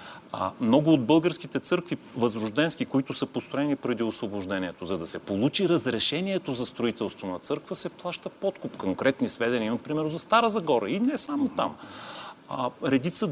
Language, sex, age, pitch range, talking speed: Bulgarian, male, 40-59, 110-160 Hz, 155 wpm